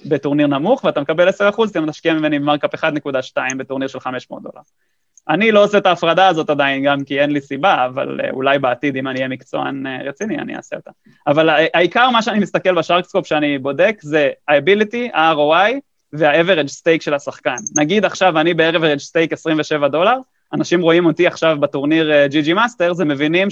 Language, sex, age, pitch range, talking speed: English, male, 20-39, 145-180 Hz, 135 wpm